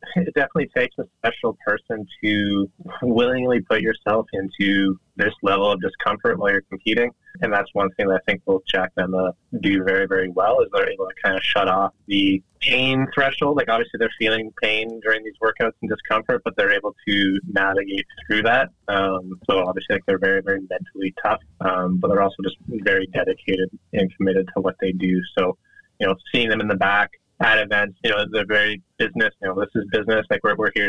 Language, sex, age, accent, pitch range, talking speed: English, male, 20-39, American, 95-115 Hz, 210 wpm